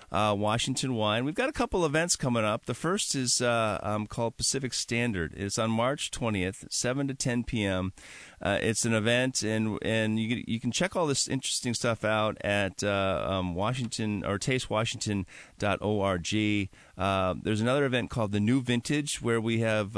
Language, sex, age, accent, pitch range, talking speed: English, male, 40-59, American, 95-125 Hz, 175 wpm